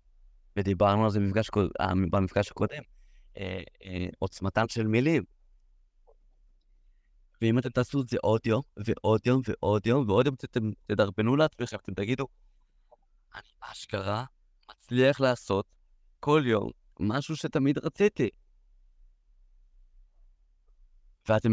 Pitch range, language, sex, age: 105-150 Hz, Hebrew, male, 20-39